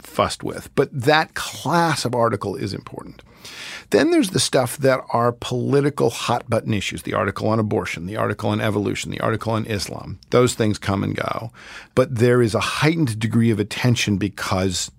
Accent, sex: American, male